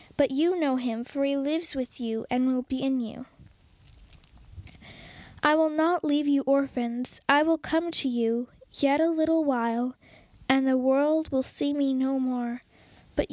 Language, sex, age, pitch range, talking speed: English, female, 10-29, 240-285 Hz, 170 wpm